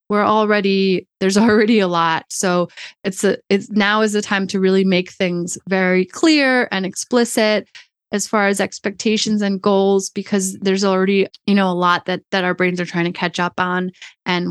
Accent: American